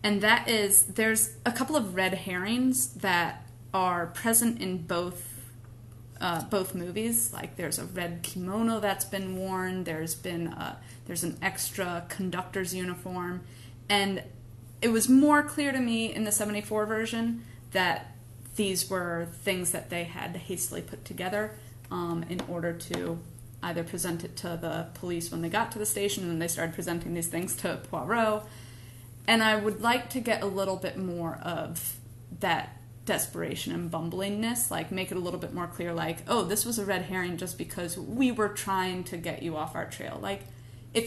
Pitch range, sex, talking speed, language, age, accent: 160-205 Hz, female, 180 wpm, English, 30-49, American